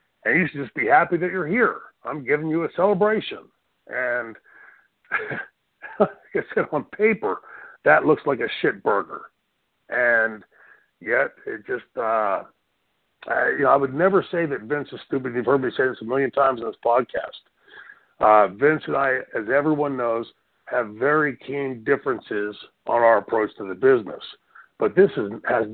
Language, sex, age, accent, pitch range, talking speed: English, male, 50-69, American, 135-195 Hz, 170 wpm